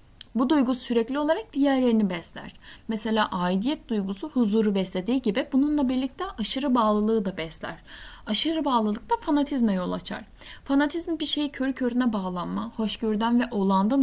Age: 10-29